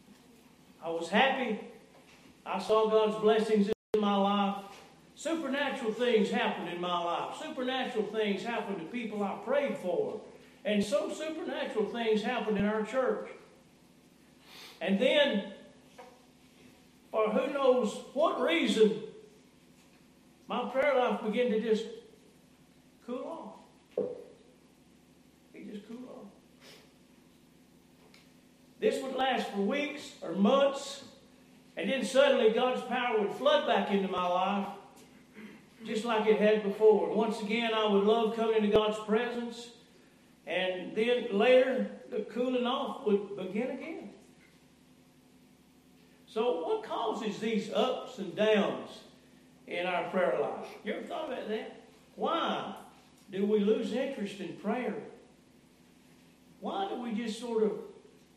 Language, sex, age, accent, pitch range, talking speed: English, male, 60-79, American, 215-255 Hz, 125 wpm